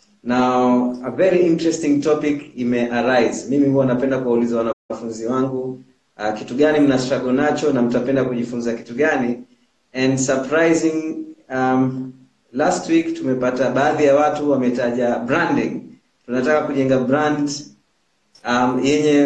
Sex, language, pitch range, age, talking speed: male, Swahili, 125-160 Hz, 30-49, 120 wpm